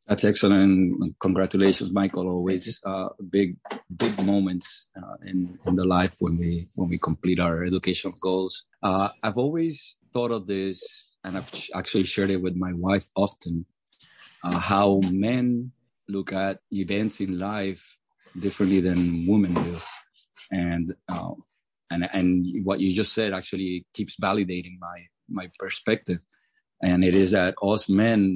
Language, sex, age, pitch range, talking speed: English, male, 30-49, 90-100 Hz, 150 wpm